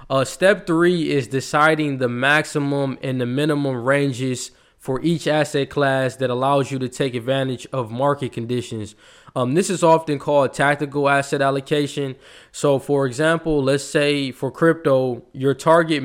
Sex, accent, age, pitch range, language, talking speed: male, American, 20-39, 130-150 Hz, English, 155 wpm